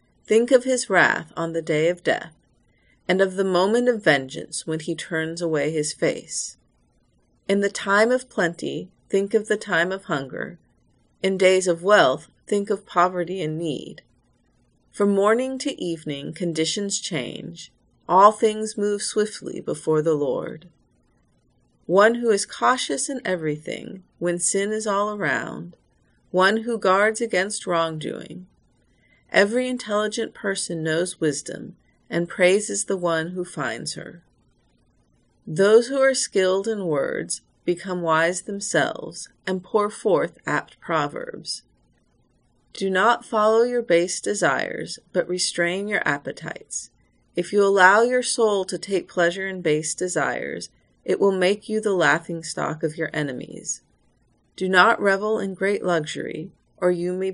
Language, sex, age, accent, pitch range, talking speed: English, female, 40-59, American, 165-210 Hz, 140 wpm